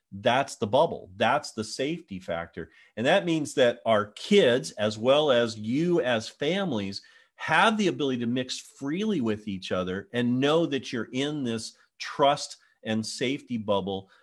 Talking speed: 160 wpm